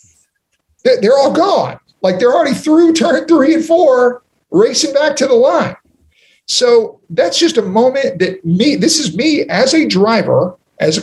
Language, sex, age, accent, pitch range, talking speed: English, male, 50-69, American, 155-225 Hz, 170 wpm